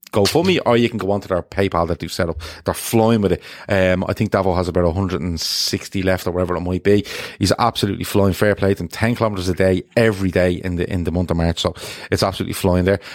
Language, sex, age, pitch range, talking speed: English, male, 30-49, 90-105 Hz, 270 wpm